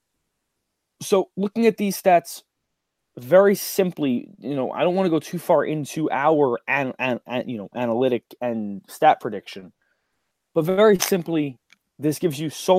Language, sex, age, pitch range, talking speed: English, male, 20-39, 125-165 Hz, 160 wpm